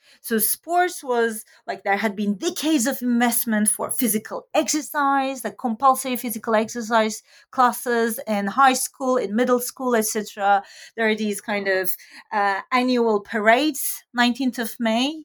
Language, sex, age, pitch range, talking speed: English, female, 30-49, 220-280 Hz, 145 wpm